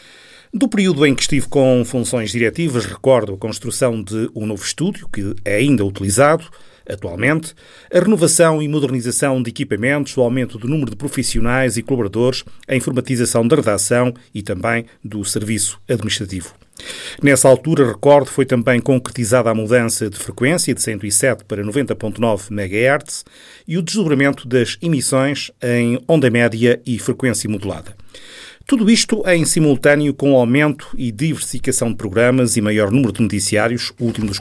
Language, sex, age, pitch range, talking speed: Portuguese, male, 40-59, 110-140 Hz, 155 wpm